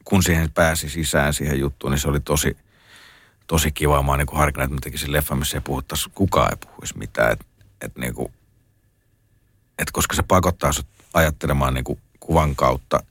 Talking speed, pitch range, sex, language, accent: 145 wpm, 70-90 Hz, male, Finnish, native